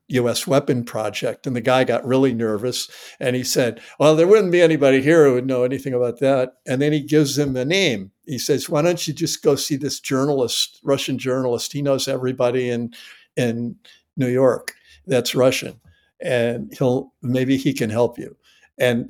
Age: 60-79